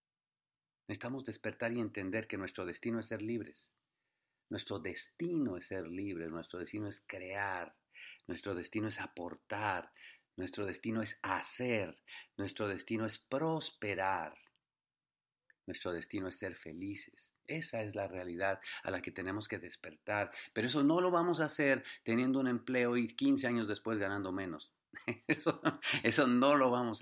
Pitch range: 100-120 Hz